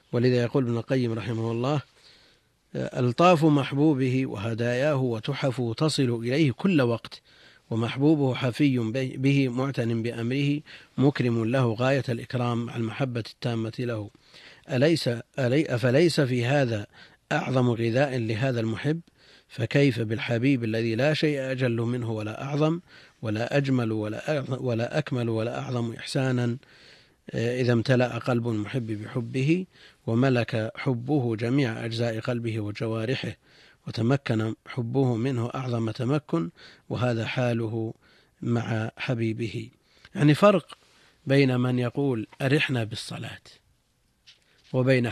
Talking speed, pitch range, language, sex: 105 wpm, 115-140 Hz, Arabic, male